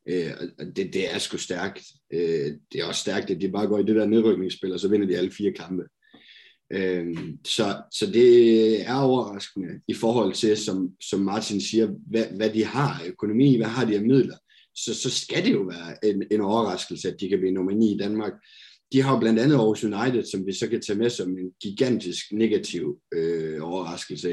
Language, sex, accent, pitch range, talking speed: Danish, male, native, 95-120 Hz, 205 wpm